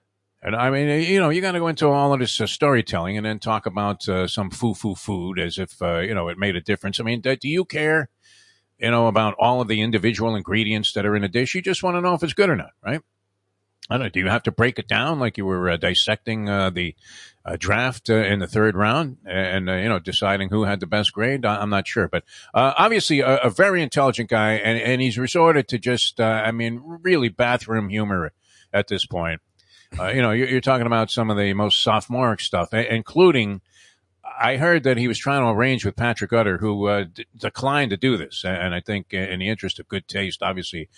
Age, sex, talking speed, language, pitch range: 50-69, male, 235 wpm, English, 95-125 Hz